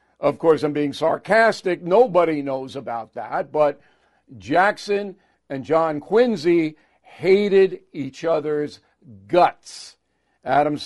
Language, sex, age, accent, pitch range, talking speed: English, male, 50-69, American, 140-190 Hz, 105 wpm